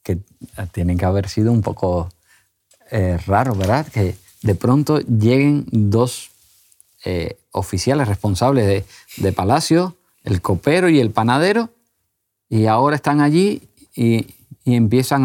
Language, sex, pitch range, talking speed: Spanish, male, 100-140 Hz, 130 wpm